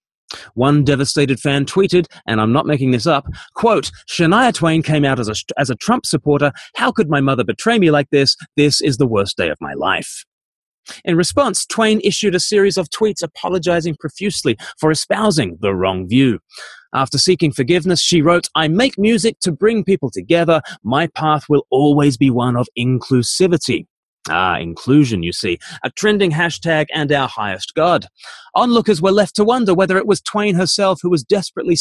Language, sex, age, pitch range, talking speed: English, male, 30-49, 135-185 Hz, 180 wpm